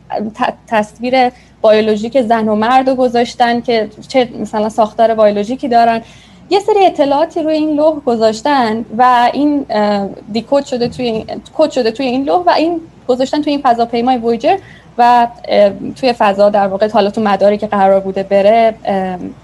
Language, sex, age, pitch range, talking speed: Persian, female, 10-29, 215-265 Hz, 150 wpm